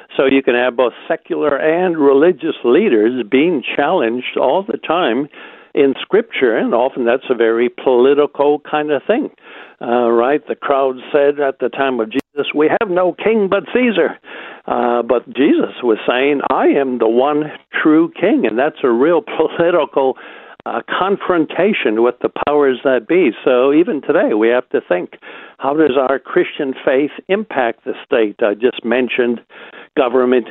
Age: 60-79